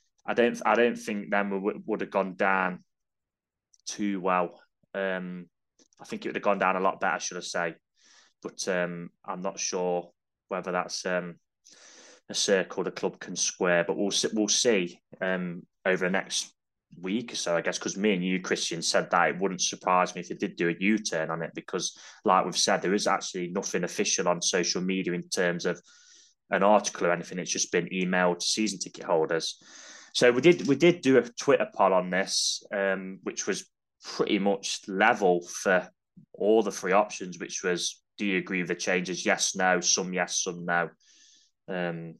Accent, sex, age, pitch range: British, male, 20-39, 90-105 Hz